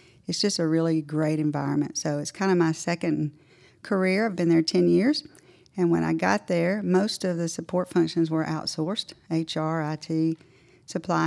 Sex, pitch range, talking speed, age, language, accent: female, 160-180 Hz, 175 wpm, 50-69, English, American